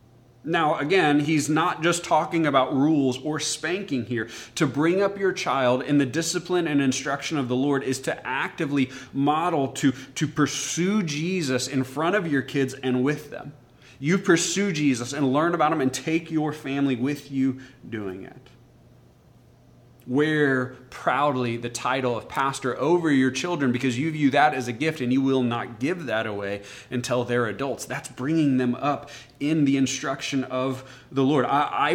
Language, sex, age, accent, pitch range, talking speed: English, male, 30-49, American, 125-150 Hz, 175 wpm